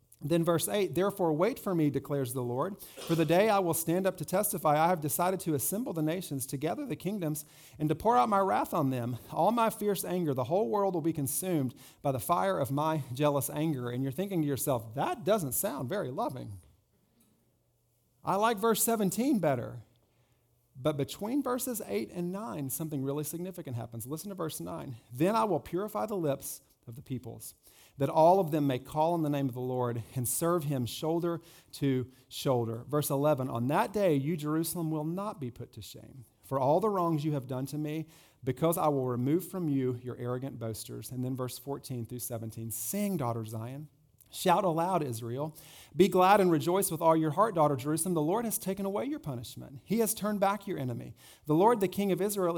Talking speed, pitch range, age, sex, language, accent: 210 wpm, 125-170 Hz, 40-59, male, English, American